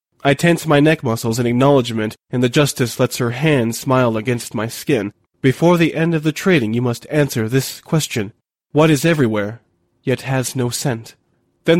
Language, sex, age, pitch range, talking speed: English, male, 20-39, 115-140 Hz, 185 wpm